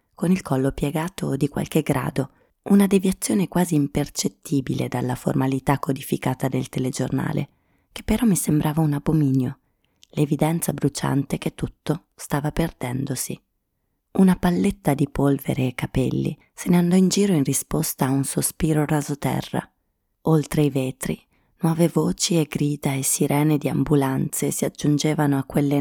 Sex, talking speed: female, 140 wpm